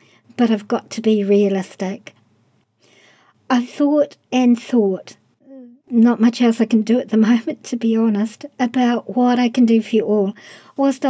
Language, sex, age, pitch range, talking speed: English, male, 50-69, 210-250 Hz, 170 wpm